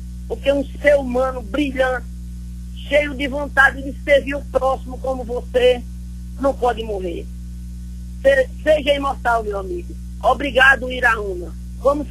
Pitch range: 190-270 Hz